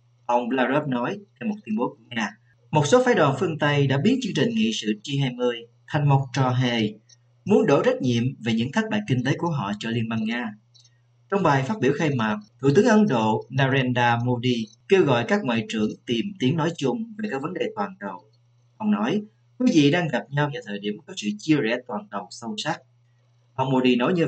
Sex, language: male, Vietnamese